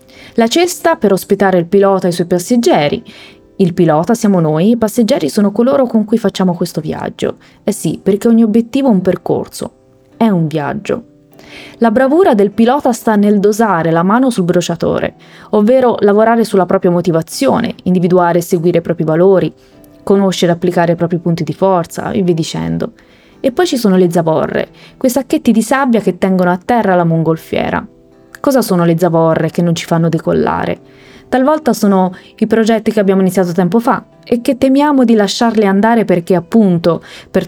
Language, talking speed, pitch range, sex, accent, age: Italian, 175 wpm, 180-230 Hz, female, native, 20-39